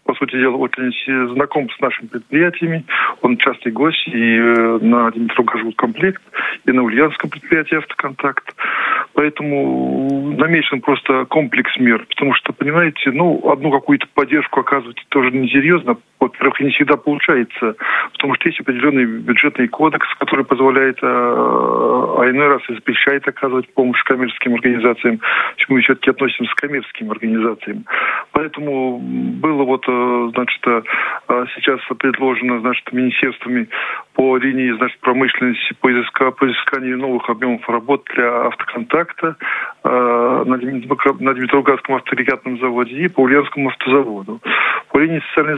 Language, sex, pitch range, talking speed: Russian, male, 120-140 Hz, 130 wpm